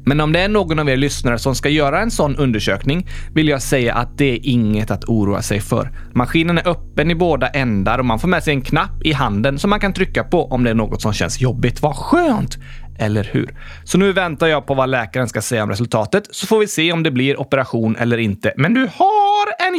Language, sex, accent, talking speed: Swedish, male, native, 245 wpm